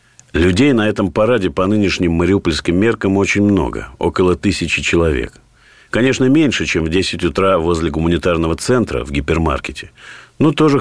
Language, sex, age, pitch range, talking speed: Russian, male, 50-69, 90-110 Hz, 145 wpm